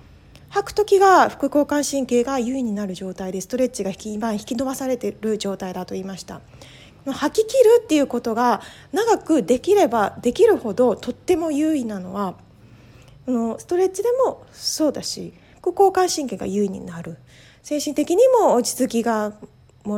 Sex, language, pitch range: female, Japanese, 205-305 Hz